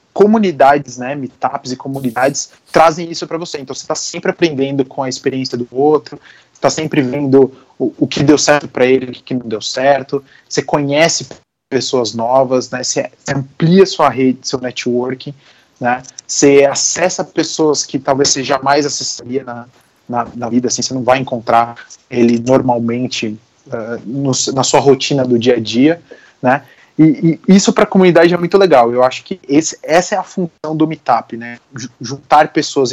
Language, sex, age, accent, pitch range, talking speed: Portuguese, male, 20-39, Brazilian, 125-165 Hz, 175 wpm